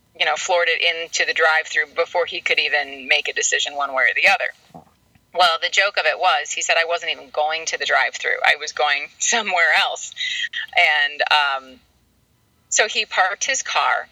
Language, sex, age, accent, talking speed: English, female, 30-49, American, 195 wpm